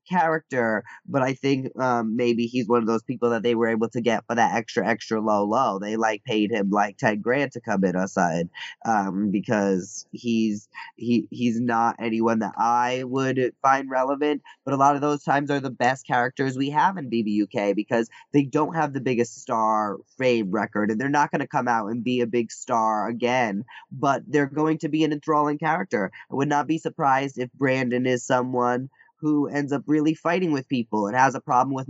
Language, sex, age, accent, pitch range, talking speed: English, male, 20-39, American, 115-140 Hz, 210 wpm